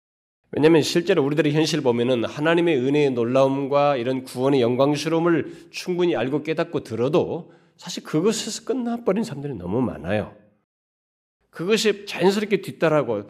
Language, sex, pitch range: Korean, male, 110-155 Hz